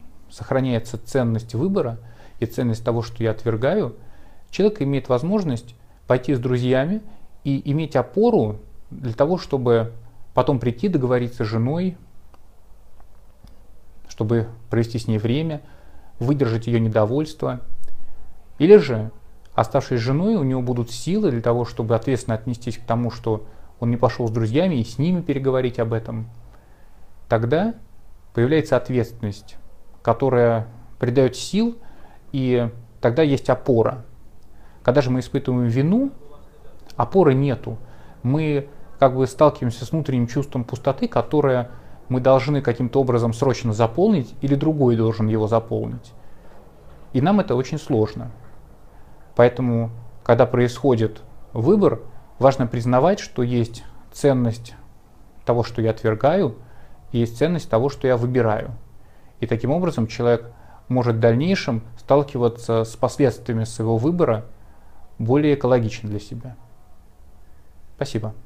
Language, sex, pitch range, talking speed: Russian, male, 115-135 Hz, 125 wpm